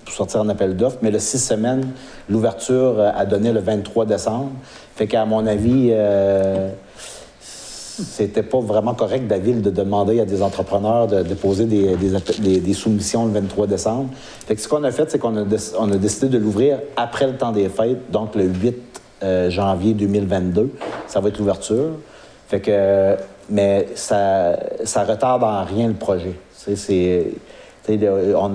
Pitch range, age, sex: 95-110 Hz, 60-79, male